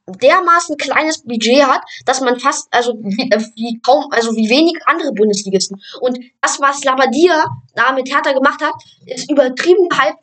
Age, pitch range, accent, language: 10-29, 220-275 Hz, German, German